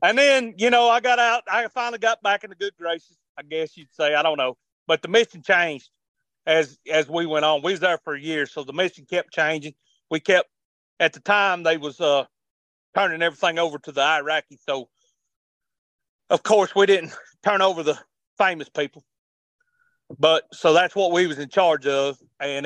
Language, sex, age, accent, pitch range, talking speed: English, male, 40-59, American, 135-170 Hz, 200 wpm